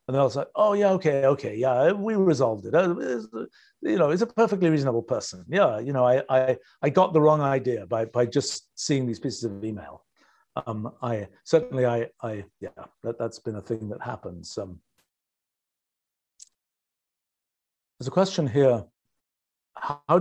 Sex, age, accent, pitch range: male, 50-69, British, 115-155 Hz